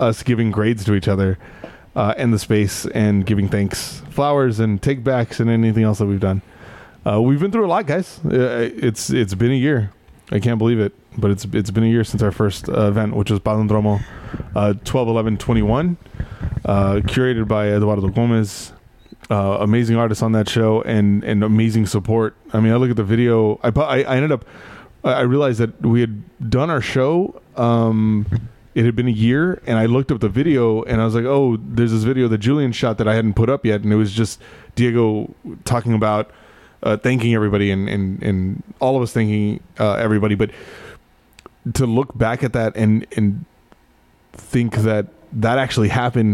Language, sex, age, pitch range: English, male, 20-39, 105-120 Hz